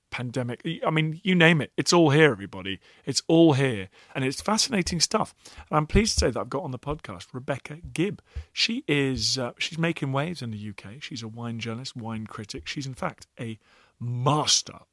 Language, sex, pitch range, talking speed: English, male, 115-155 Hz, 200 wpm